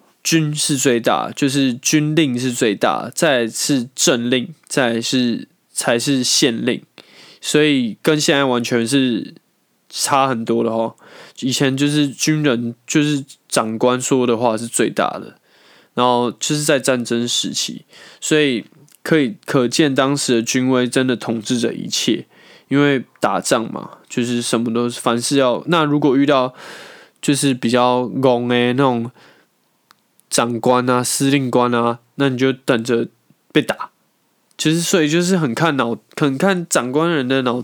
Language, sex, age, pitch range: Chinese, male, 20-39, 120-145 Hz